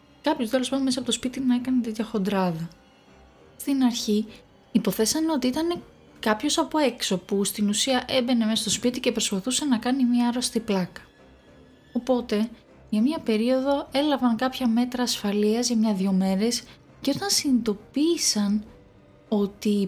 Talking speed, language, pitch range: 145 wpm, Greek, 200-265 Hz